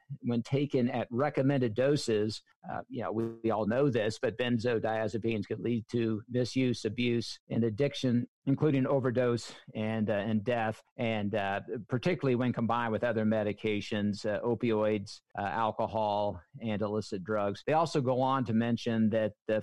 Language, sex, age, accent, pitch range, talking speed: English, male, 50-69, American, 105-125 Hz, 155 wpm